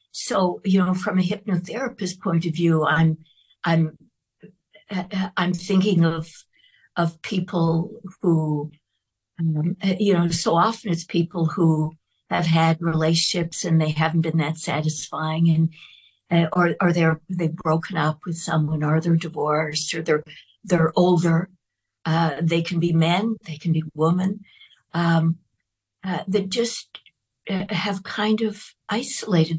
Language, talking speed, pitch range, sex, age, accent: English, 135 wpm, 160-190 Hz, female, 60-79, American